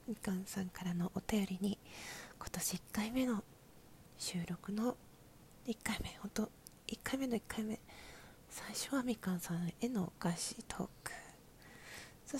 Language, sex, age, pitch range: Japanese, female, 40-59, 185-225 Hz